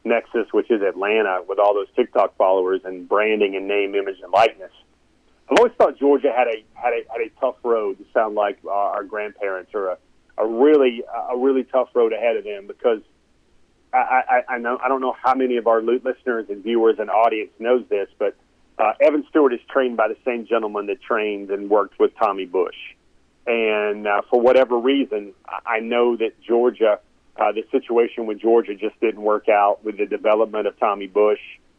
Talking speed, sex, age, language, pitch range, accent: 200 wpm, male, 40-59, English, 105-130 Hz, American